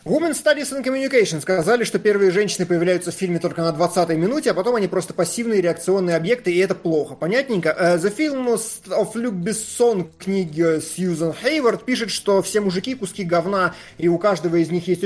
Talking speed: 185 wpm